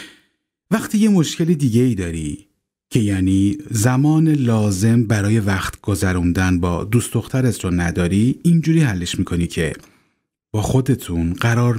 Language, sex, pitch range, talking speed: Persian, male, 95-125 Hz, 125 wpm